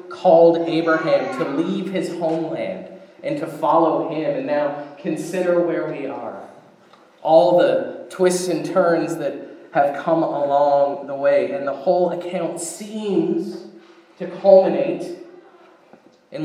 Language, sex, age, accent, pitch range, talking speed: English, male, 30-49, American, 160-185 Hz, 130 wpm